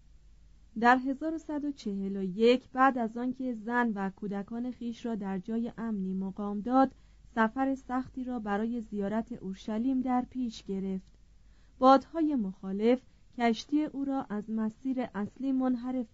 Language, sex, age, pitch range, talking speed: Persian, female, 30-49, 215-265 Hz, 125 wpm